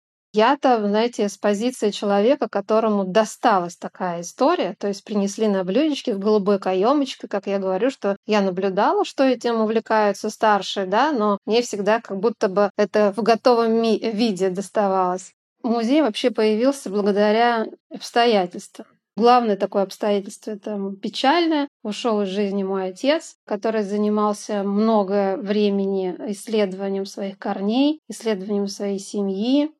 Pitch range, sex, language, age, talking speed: 200-235 Hz, female, Russian, 20-39, 130 wpm